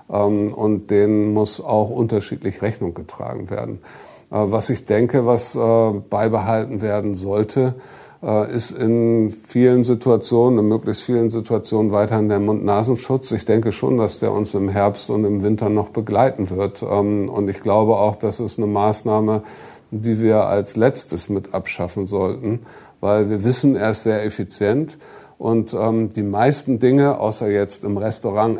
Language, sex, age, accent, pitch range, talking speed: German, male, 50-69, German, 105-115 Hz, 150 wpm